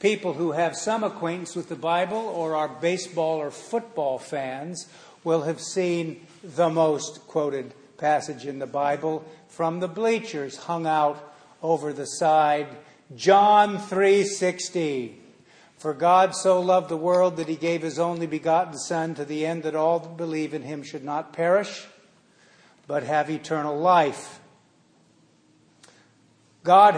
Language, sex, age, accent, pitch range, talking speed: English, male, 60-79, American, 150-175 Hz, 140 wpm